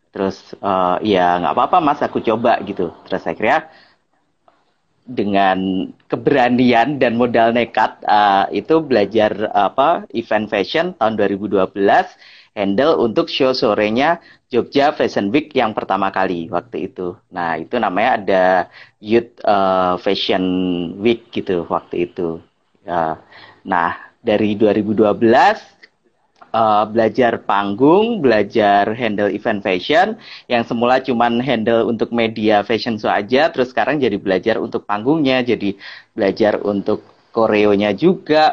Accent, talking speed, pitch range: native, 125 wpm, 100-125 Hz